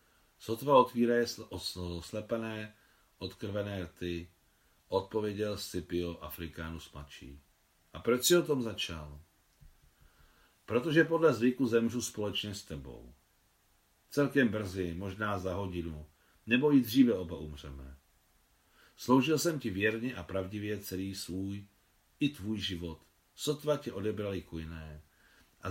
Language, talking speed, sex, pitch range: Czech, 110 wpm, male, 80-115 Hz